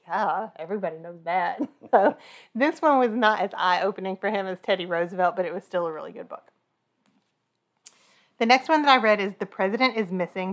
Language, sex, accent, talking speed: English, female, American, 200 wpm